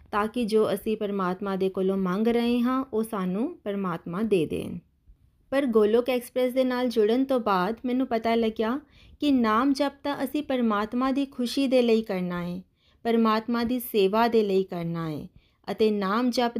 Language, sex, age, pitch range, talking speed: Punjabi, female, 30-49, 215-265 Hz, 175 wpm